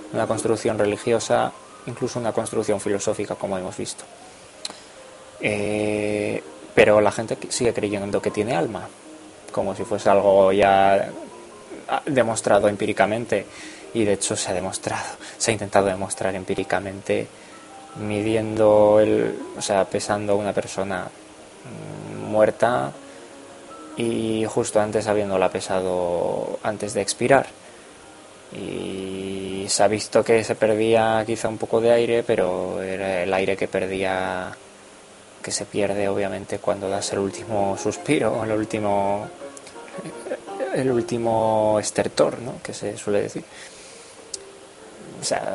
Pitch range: 100-110 Hz